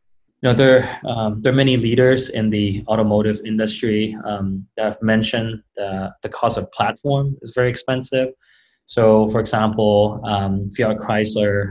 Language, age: English, 20-39